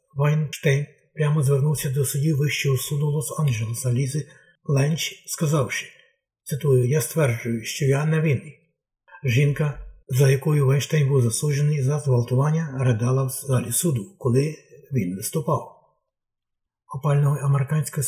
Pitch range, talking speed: 135-155 Hz, 115 wpm